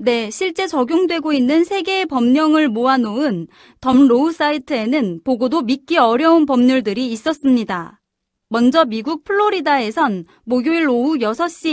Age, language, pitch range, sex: 30-49, Korean, 240-320 Hz, female